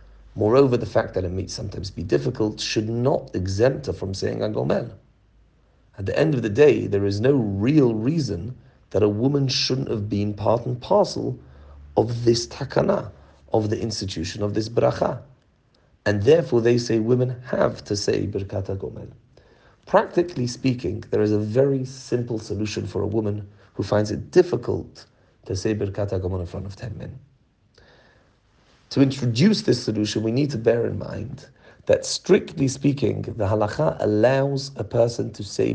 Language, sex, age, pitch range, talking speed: English, male, 40-59, 105-130 Hz, 170 wpm